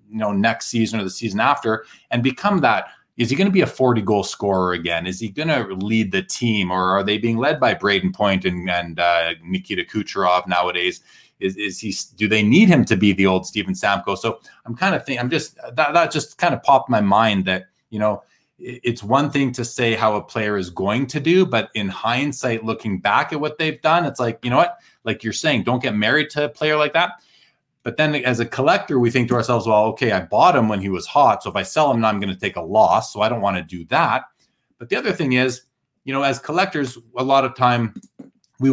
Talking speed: 250 wpm